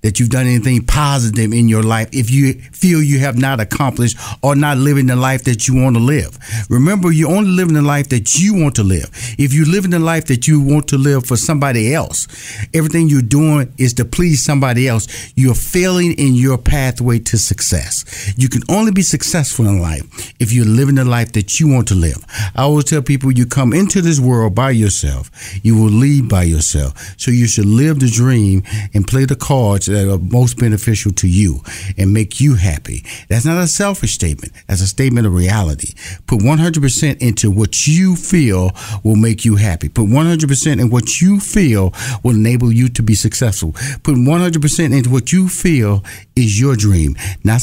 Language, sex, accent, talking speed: English, male, American, 200 wpm